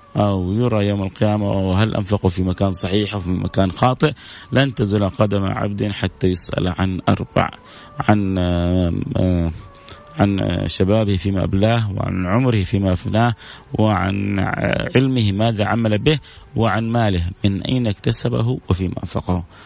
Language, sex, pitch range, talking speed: Arabic, male, 95-115 Hz, 130 wpm